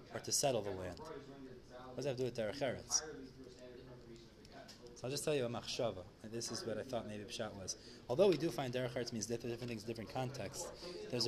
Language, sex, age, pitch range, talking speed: English, male, 20-39, 115-140 Hz, 220 wpm